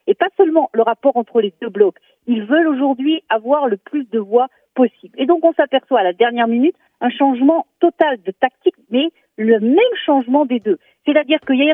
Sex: female